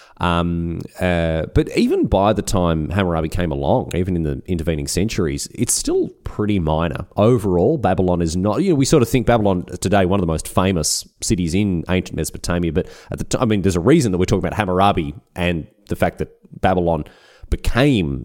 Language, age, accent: English, 30-49, Australian